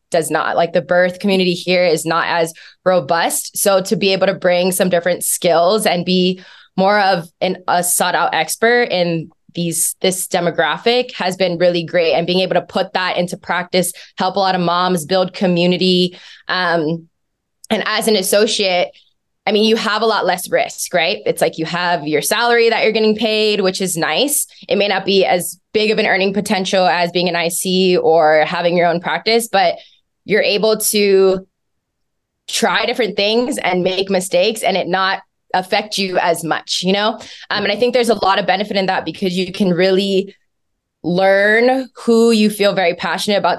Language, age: English, 20-39